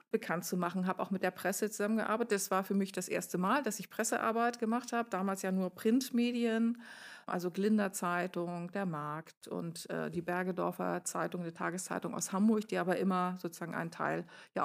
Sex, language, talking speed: female, German, 185 wpm